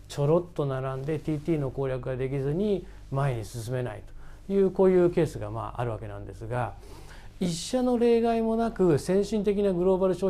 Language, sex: Japanese, male